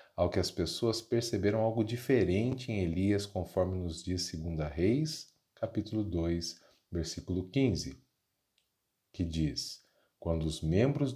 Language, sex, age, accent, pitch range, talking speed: Portuguese, male, 40-59, Brazilian, 85-115 Hz, 125 wpm